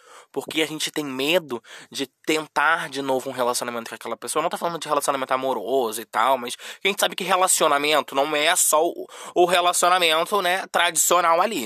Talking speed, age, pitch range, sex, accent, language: 190 wpm, 20-39, 130-195 Hz, male, Brazilian, Portuguese